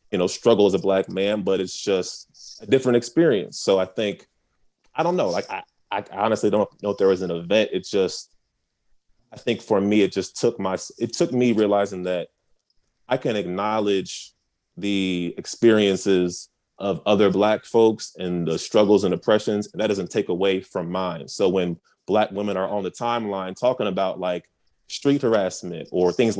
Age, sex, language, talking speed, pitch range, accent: 30-49, male, English, 185 wpm, 95-110 Hz, American